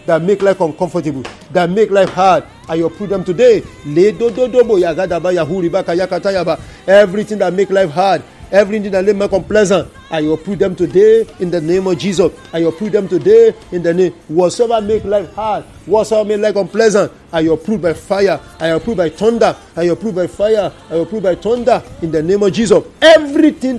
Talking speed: 175 wpm